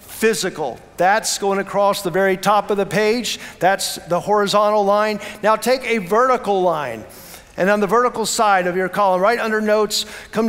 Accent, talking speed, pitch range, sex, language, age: American, 175 wpm, 190-225 Hz, male, English, 50-69